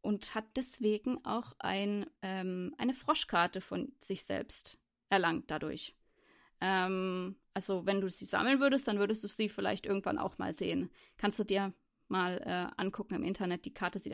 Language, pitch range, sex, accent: German, 200-230 Hz, female, German